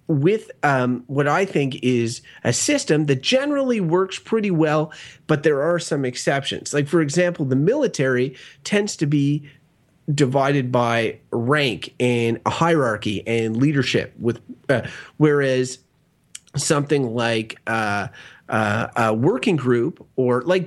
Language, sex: English, male